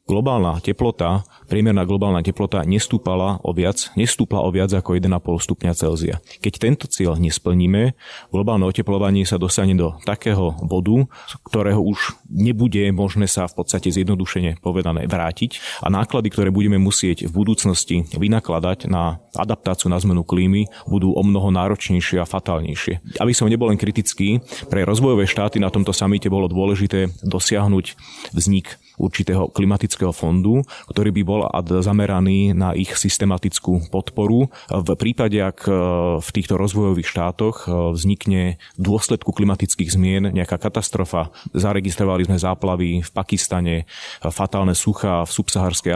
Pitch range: 90-105 Hz